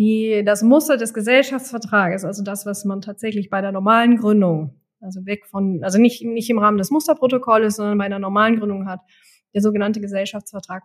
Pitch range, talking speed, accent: 200-240 Hz, 185 wpm, German